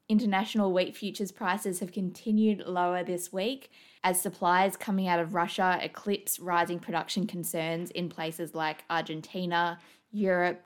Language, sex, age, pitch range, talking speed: English, female, 20-39, 165-195 Hz, 135 wpm